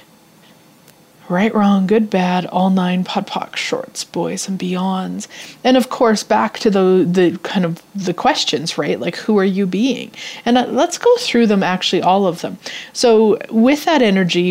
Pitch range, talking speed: 180-215 Hz, 170 wpm